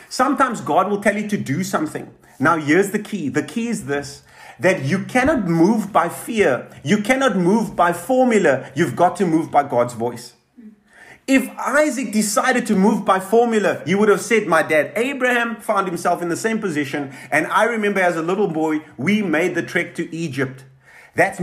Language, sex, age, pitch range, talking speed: English, male, 30-49, 160-215 Hz, 190 wpm